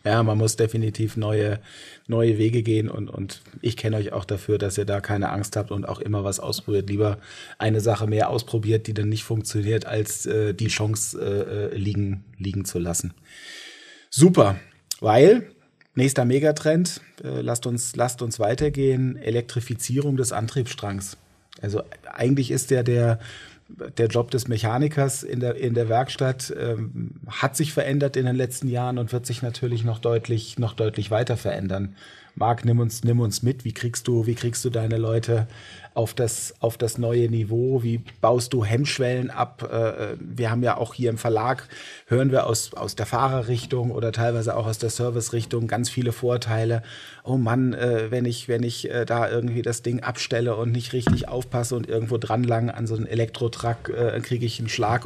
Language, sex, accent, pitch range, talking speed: German, male, German, 110-130 Hz, 180 wpm